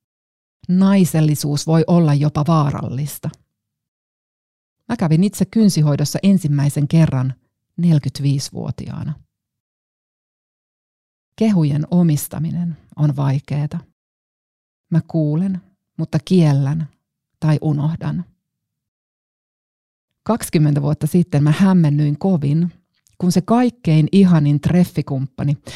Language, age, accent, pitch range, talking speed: Finnish, 30-49, native, 140-175 Hz, 75 wpm